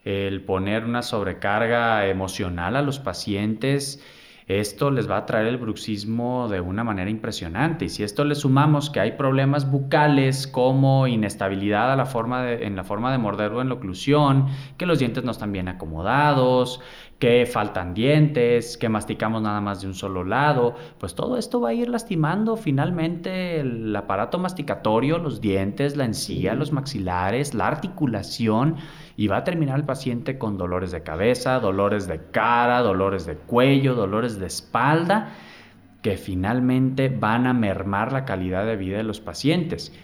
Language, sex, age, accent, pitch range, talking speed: Spanish, male, 30-49, Mexican, 100-140 Hz, 160 wpm